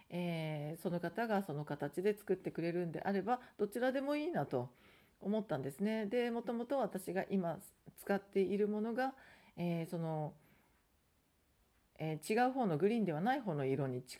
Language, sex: Japanese, female